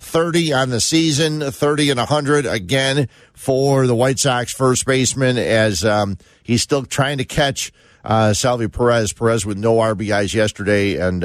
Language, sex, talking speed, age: English, male, 160 wpm, 50-69